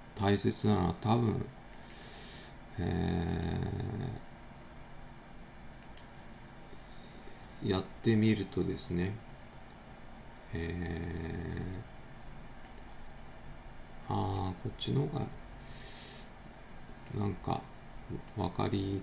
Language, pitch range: Japanese, 85-115 Hz